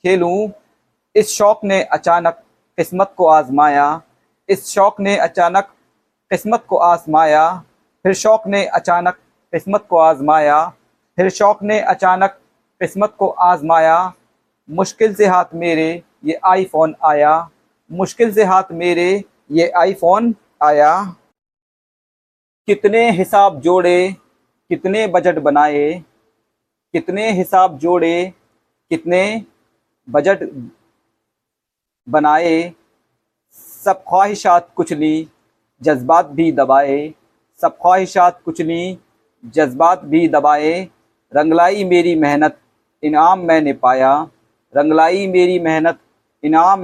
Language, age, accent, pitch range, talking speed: Hindi, 50-69, native, 150-190 Hz, 100 wpm